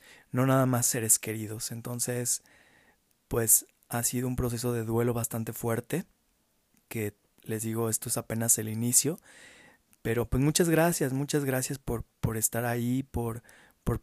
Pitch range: 115-135 Hz